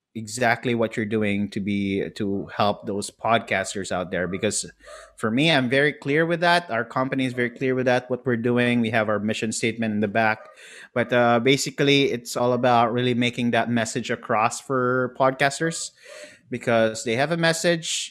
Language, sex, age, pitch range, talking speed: English, male, 30-49, 110-140 Hz, 185 wpm